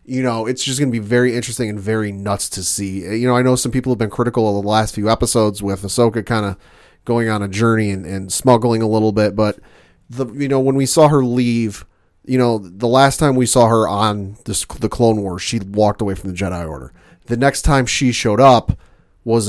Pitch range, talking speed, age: 100-125 Hz, 240 wpm, 30-49